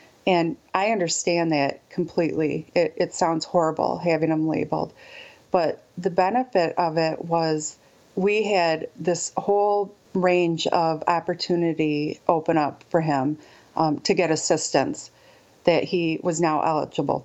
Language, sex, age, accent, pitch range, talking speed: English, female, 40-59, American, 160-195 Hz, 130 wpm